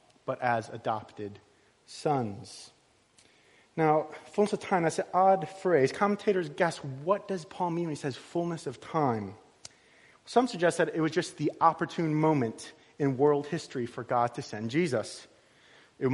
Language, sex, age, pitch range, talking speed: English, male, 30-49, 140-190 Hz, 155 wpm